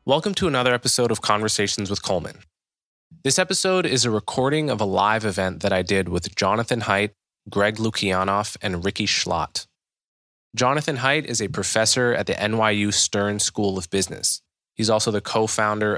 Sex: male